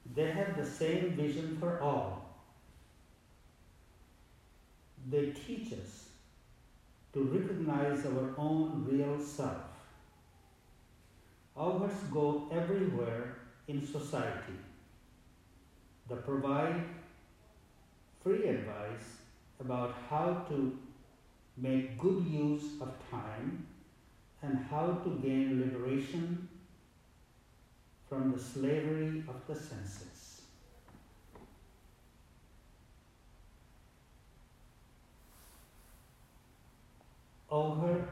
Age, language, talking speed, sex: 50-69, English, 70 wpm, male